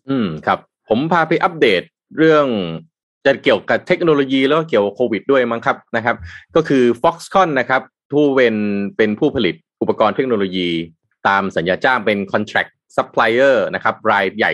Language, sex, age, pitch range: Thai, male, 20-39, 95-135 Hz